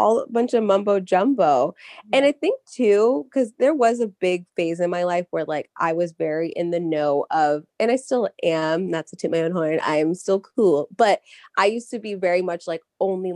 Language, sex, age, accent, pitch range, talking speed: English, female, 20-39, American, 165-210 Hz, 225 wpm